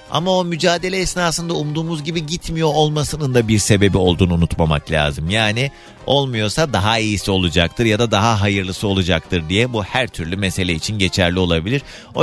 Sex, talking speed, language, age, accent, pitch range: male, 160 wpm, Turkish, 40-59, native, 100-160 Hz